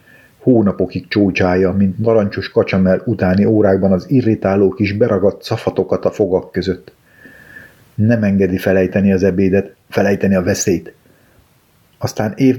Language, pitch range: Hungarian, 100-115 Hz